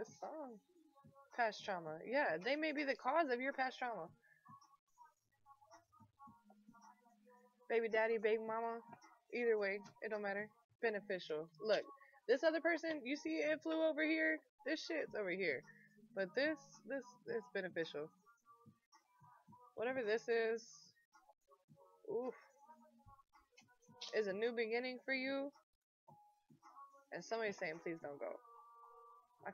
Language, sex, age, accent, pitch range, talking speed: English, female, 20-39, American, 190-275 Hz, 120 wpm